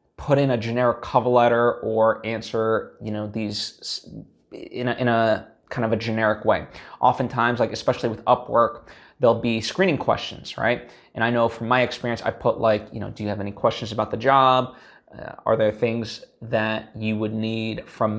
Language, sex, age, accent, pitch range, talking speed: English, male, 20-39, American, 110-125 Hz, 190 wpm